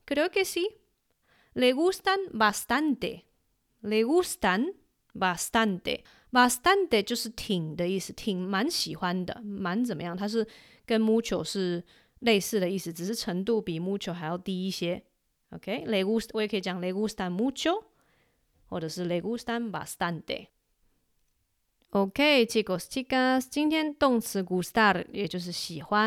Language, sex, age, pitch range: Chinese, female, 20-39, 180-235 Hz